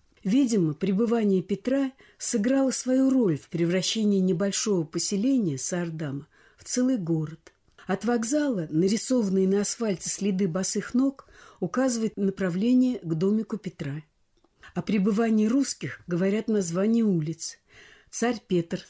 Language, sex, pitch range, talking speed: Russian, female, 170-220 Hz, 110 wpm